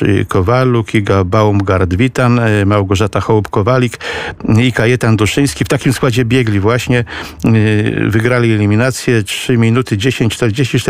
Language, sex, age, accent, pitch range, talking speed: Polish, male, 50-69, native, 110-130 Hz, 115 wpm